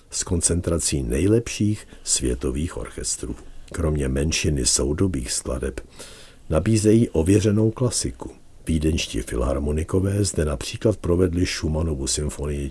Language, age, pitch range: Czech, 60-79, 70-100 Hz